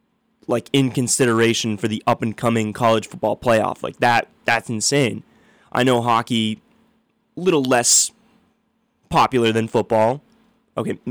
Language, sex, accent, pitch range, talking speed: English, male, American, 115-150 Hz, 125 wpm